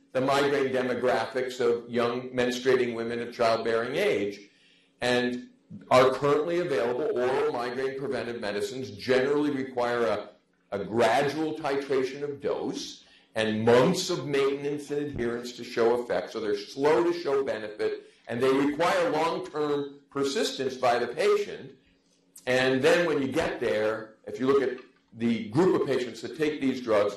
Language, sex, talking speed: English, male, 150 wpm